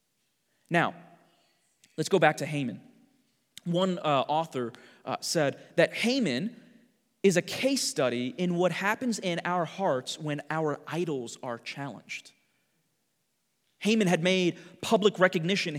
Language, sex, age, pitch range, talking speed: English, male, 30-49, 155-220 Hz, 125 wpm